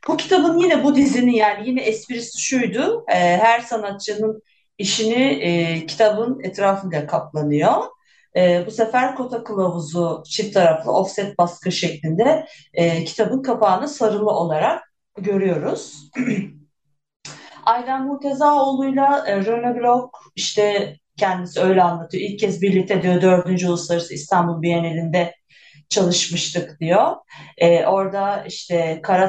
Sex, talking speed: female, 110 wpm